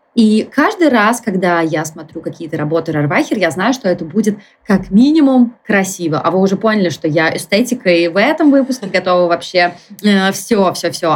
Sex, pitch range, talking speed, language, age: female, 170-215 Hz, 160 wpm, Russian, 20-39